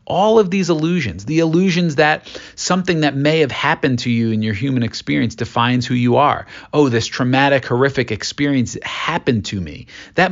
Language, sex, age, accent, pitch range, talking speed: English, male, 40-59, American, 105-150 Hz, 180 wpm